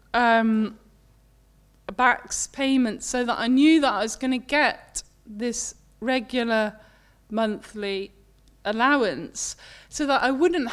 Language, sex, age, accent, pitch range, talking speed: English, female, 20-39, British, 235-300 Hz, 125 wpm